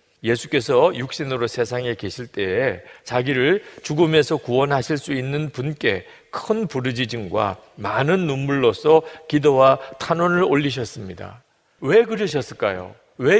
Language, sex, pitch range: Korean, male, 110-155 Hz